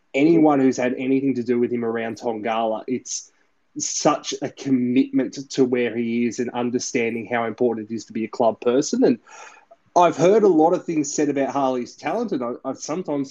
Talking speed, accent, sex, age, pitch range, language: 195 wpm, Australian, male, 20-39, 115-135 Hz, English